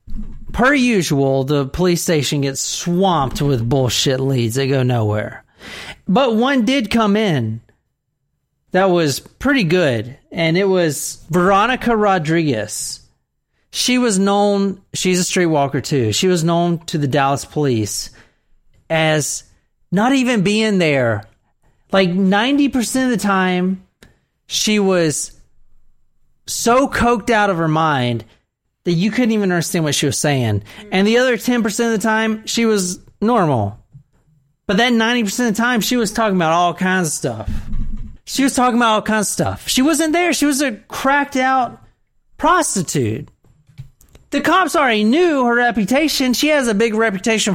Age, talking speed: 40-59, 150 wpm